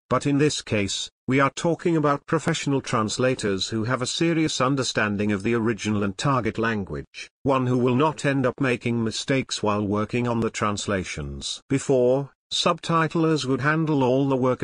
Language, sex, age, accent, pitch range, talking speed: English, male, 50-69, British, 110-140 Hz, 170 wpm